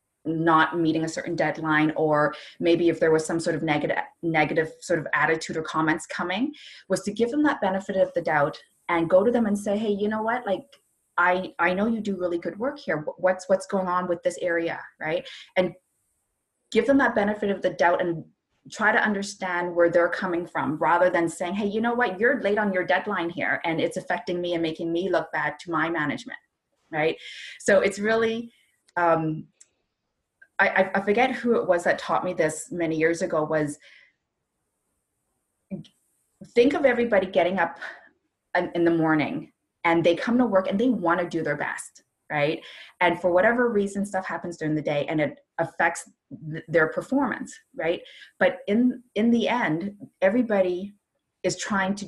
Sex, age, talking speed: female, 20-39, 185 wpm